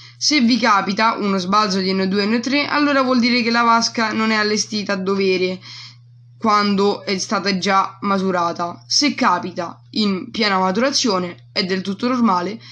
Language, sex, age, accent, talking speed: Italian, female, 20-39, native, 160 wpm